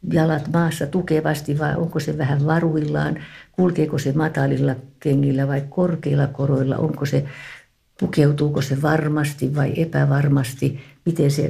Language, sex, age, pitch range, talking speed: Finnish, female, 60-79, 120-150 Hz, 115 wpm